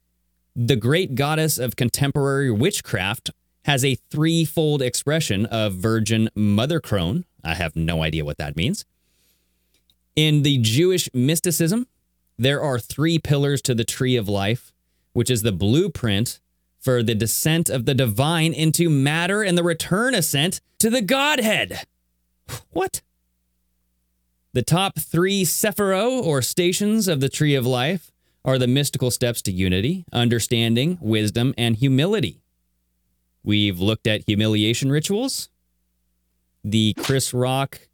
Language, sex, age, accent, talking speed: English, male, 30-49, American, 130 wpm